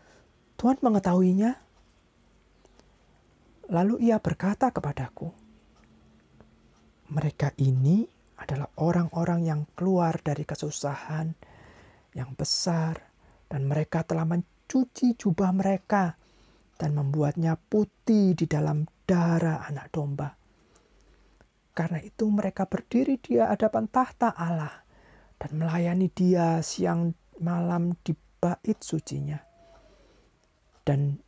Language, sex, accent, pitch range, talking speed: Indonesian, male, native, 150-185 Hz, 90 wpm